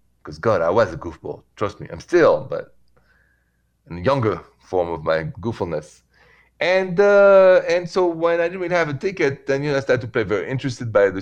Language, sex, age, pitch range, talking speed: English, male, 30-49, 100-135 Hz, 215 wpm